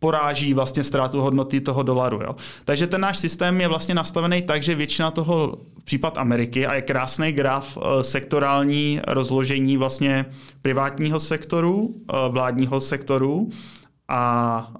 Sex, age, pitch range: male, 20-39, 130-155 Hz